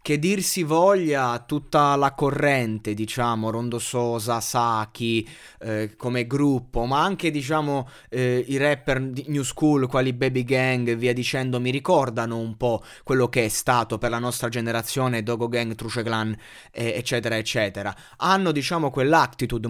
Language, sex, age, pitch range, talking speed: Italian, male, 20-39, 120-155 Hz, 150 wpm